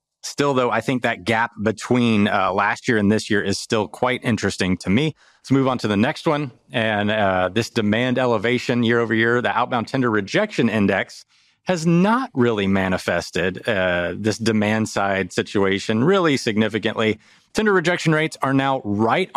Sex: male